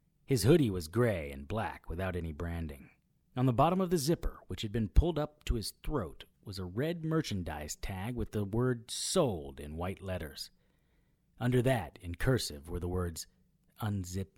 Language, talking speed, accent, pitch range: English, 180 wpm, American, 85-130 Hz